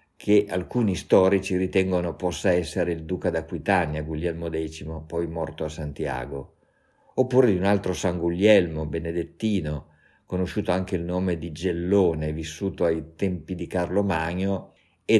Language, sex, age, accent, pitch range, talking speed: Italian, male, 50-69, native, 80-100 Hz, 140 wpm